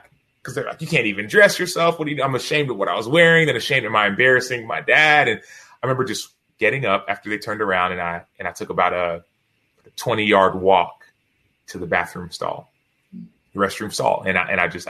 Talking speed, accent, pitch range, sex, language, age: 240 wpm, American, 95-115 Hz, male, English, 20-39